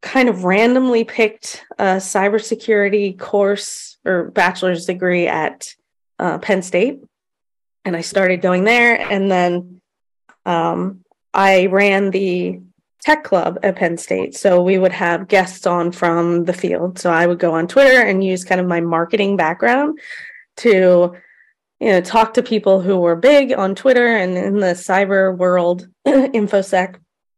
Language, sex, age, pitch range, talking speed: English, female, 20-39, 175-200 Hz, 150 wpm